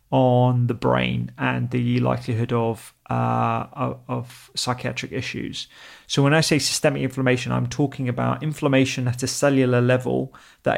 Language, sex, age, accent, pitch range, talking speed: English, male, 30-49, British, 120-135 Hz, 145 wpm